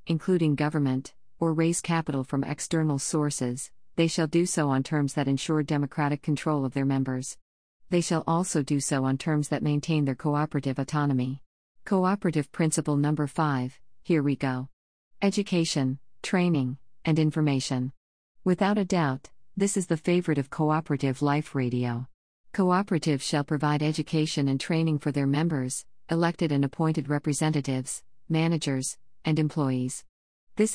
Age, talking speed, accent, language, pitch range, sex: 50-69, 140 wpm, American, English, 135-165 Hz, female